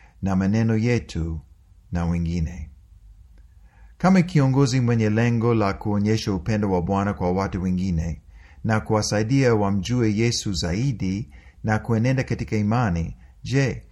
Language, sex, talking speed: Swahili, male, 115 wpm